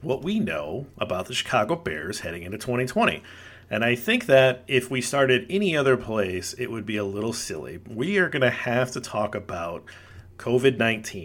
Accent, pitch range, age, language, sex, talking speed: American, 100-125 Hz, 40-59, English, male, 185 wpm